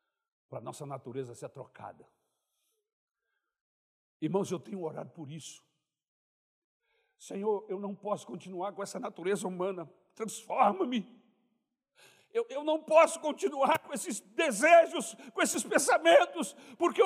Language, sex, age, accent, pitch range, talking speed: Portuguese, male, 60-79, Brazilian, 220-370 Hz, 115 wpm